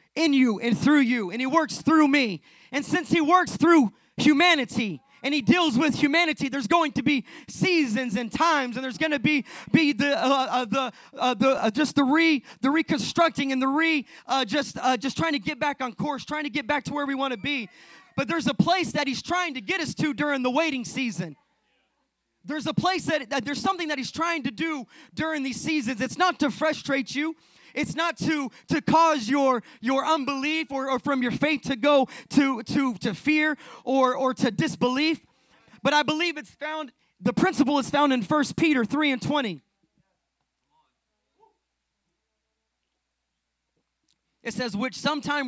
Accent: American